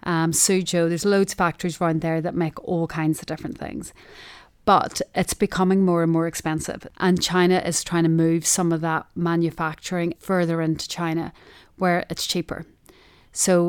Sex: female